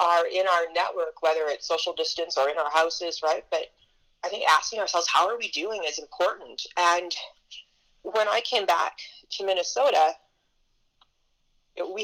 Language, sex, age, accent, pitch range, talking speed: English, female, 30-49, American, 160-205 Hz, 160 wpm